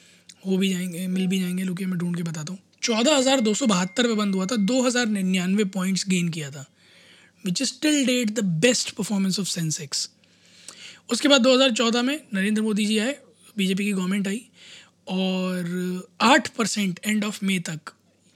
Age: 20-39